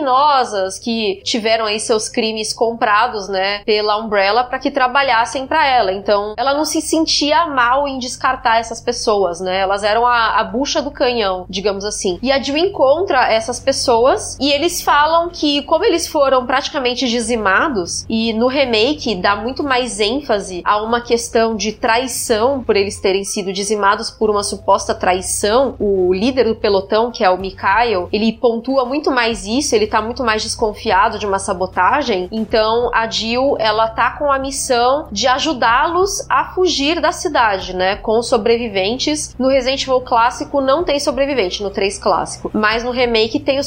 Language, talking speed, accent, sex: Portuguese, 170 wpm, Brazilian, female